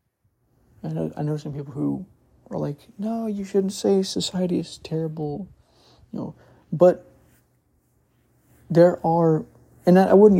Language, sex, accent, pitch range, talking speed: English, male, American, 120-155 Hz, 135 wpm